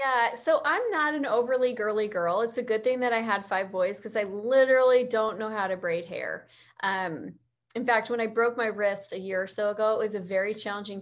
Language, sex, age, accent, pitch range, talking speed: English, female, 20-39, American, 190-245 Hz, 240 wpm